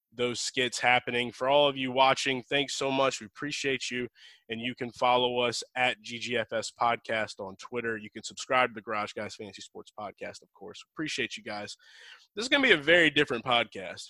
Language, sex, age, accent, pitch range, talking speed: English, male, 20-39, American, 120-145 Hz, 205 wpm